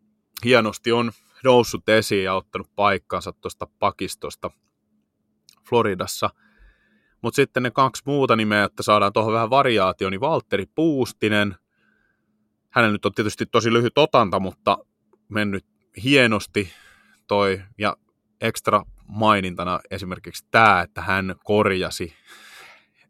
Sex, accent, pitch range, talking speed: male, native, 95-110 Hz, 110 wpm